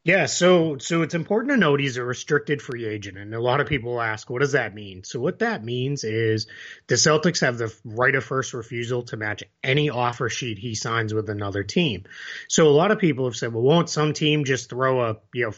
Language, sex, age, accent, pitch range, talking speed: English, male, 30-49, American, 115-150 Hz, 235 wpm